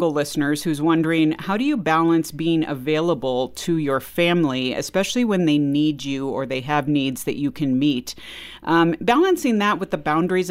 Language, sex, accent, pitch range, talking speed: English, female, American, 145-185 Hz, 175 wpm